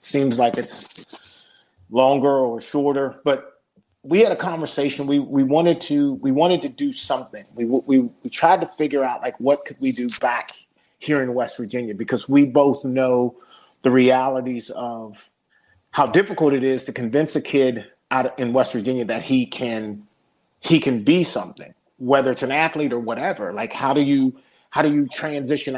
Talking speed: 180 wpm